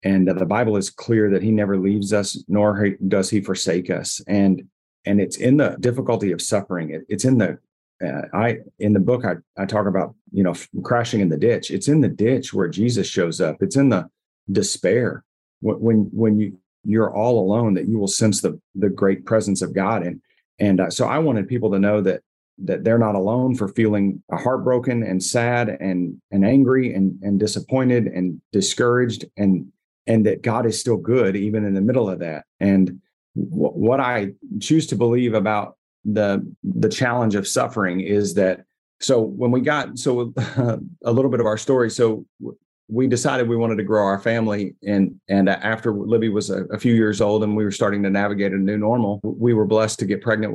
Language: English